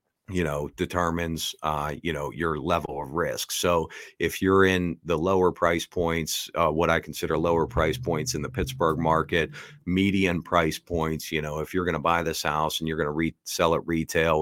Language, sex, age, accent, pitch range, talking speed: English, male, 50-69, American, 75-85 Hz, 200 wpm